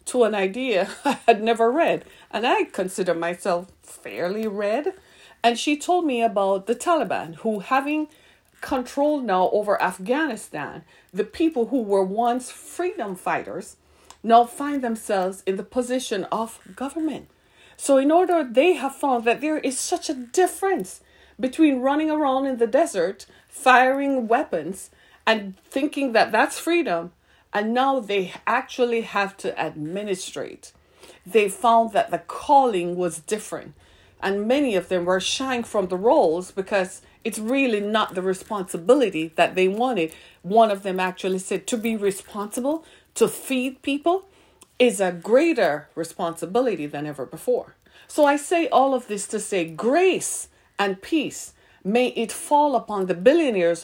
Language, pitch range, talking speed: English, 190-275 Hz, 150 wpm